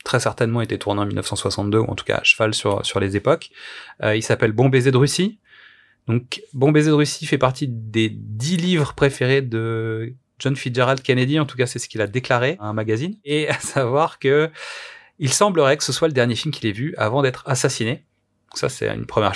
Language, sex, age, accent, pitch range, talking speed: French, male, 30-49, French, 110-140 Hz, 235 wpm